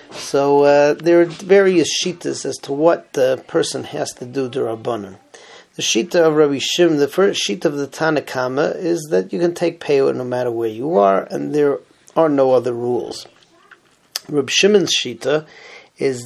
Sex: male